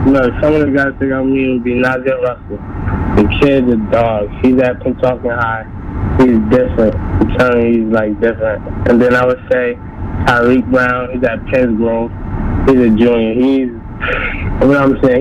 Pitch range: 110-135 Hz